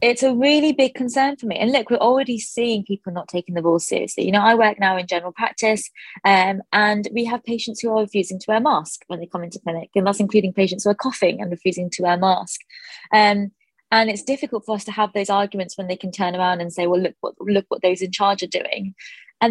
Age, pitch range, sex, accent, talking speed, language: 20-39, 190-235 Hz, female, British, 245 wpm, English